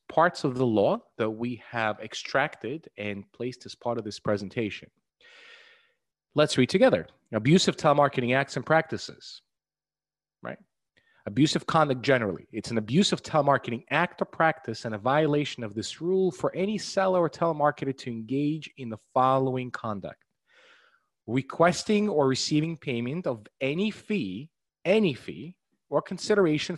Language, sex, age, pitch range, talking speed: English, male, 30-49, 115-160 Hz, 140 wpm